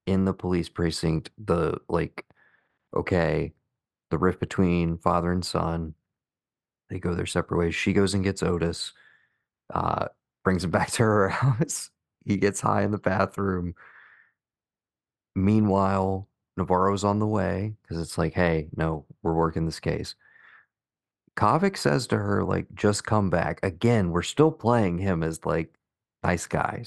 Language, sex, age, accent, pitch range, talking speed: English, male, 30-49, American, 85-105 Hz, 150 wpm